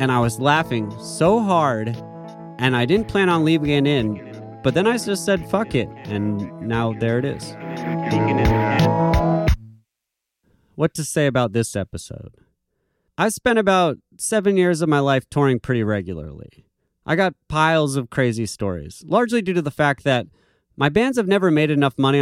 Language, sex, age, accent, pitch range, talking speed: English, male, 30-49, American, 110-155 Hz, 165 wpm